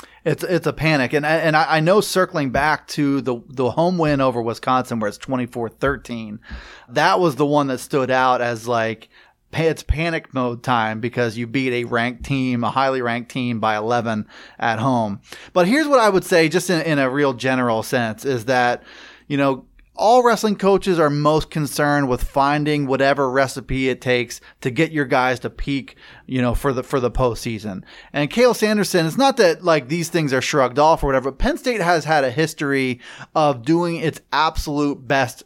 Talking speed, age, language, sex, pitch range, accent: 195 wpm, 30-49, English, male, 125-155 Hz, American